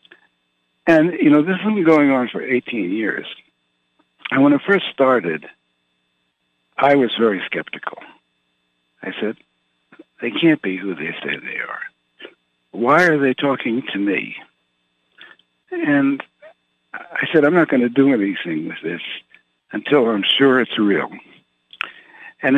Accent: American